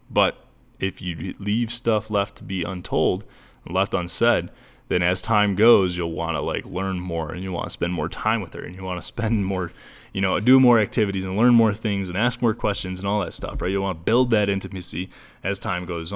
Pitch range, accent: 95-120 Hz, American